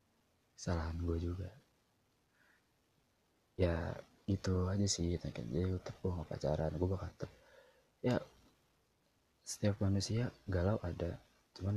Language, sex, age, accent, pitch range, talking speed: Indonesian, male, 20-39, native, 85-100 Hz, 110 wpm